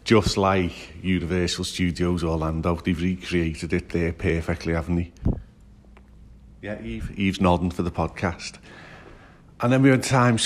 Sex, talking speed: male, 140 wpm